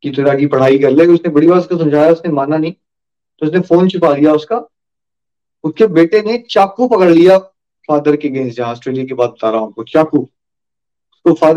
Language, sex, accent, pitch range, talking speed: Hindi, male, native, 160-245 Hz, 115 wpm